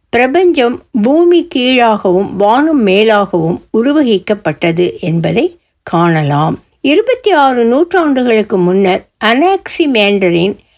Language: Tamil